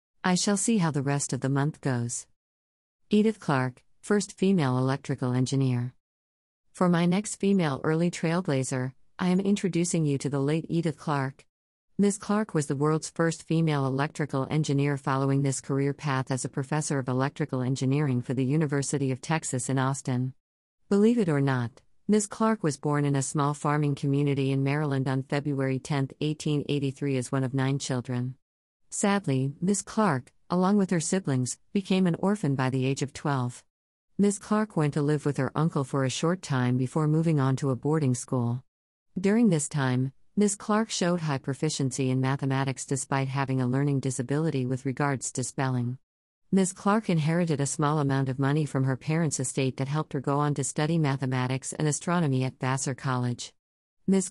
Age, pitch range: 50-69, 130-160 Hz